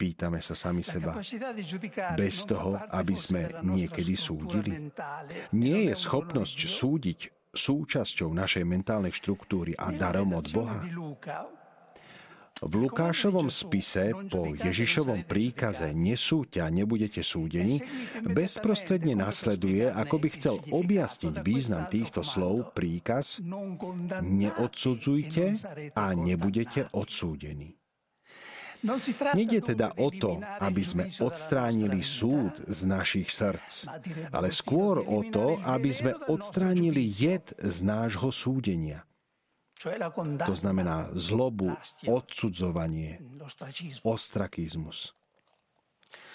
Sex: male